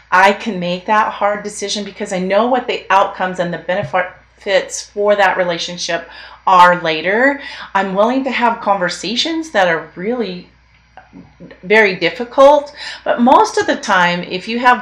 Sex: female